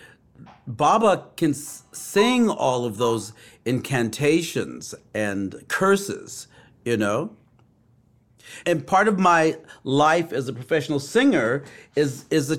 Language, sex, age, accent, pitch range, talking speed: English, male, 40-59, American, 120-160 Hz, 110 wpm